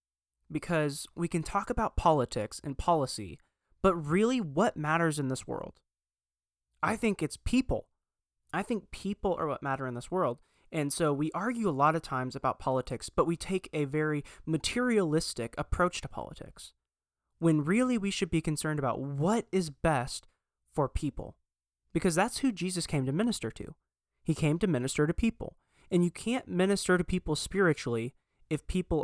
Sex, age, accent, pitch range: male, 20-39, American, 125-185 Hz